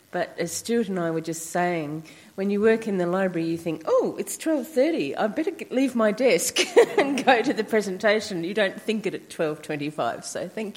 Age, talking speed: 40-59, 205 wpm